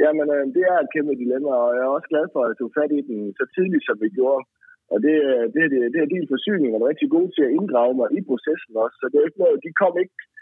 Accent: native